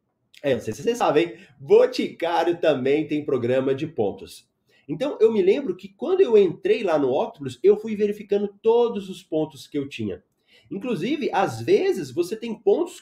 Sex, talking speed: male, 160 wpm